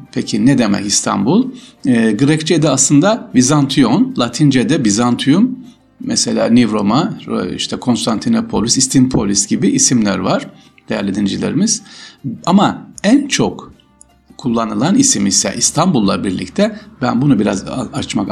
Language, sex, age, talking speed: Turkish, male, 60-79, 105 wpm